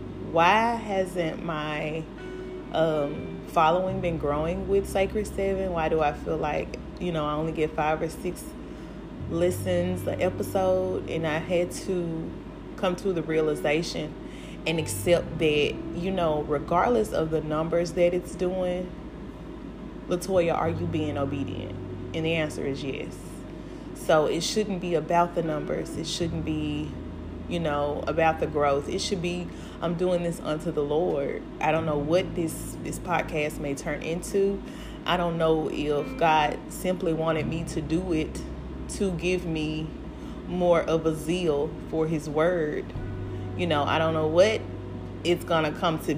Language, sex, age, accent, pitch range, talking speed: English, female, 30-49, American, 150-175 Hz, 155 wpm